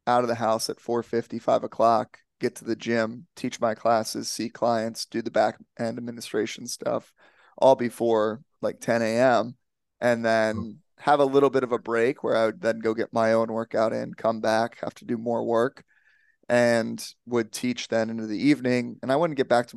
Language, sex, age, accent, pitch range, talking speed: English, male, 30-49, American, 115-125 Hz, 200 wpm